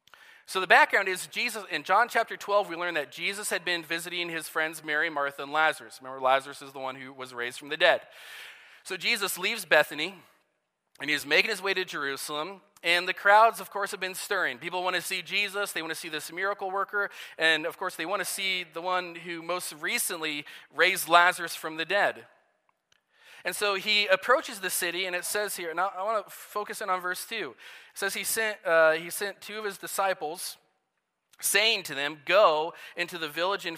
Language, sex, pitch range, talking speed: English, male, 145-195 Hz, 210 wpm